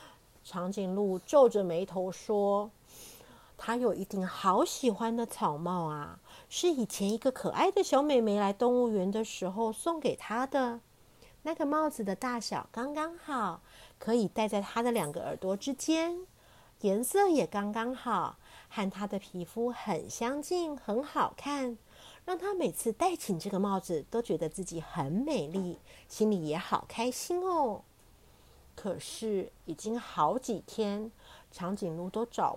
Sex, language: female, Chinese